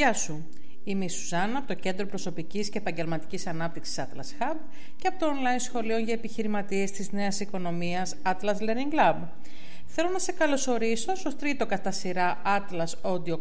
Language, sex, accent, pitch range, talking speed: Greek, female, native, 185-270 Hz, 165 wpm